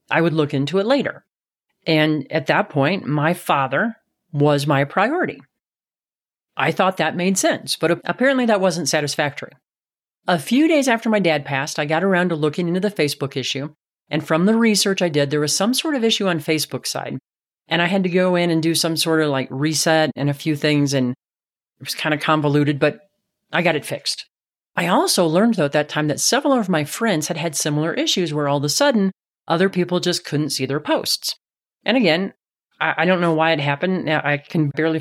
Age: 40-59